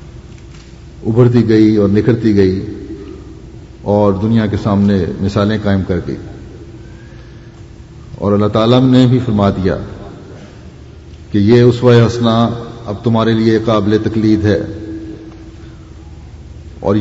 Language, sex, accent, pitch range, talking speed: English, male, Indian, 110-125 Hz, 110 wpm